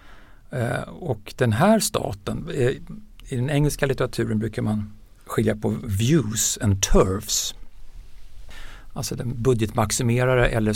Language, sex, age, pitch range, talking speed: Swedish, male, 60-79, 110-150 Hz, 105 wpm